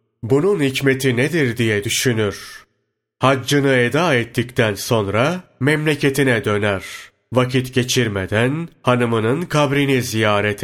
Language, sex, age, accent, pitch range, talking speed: Turkish, male, 30-49, native, 110-140 Hz, 90 wpm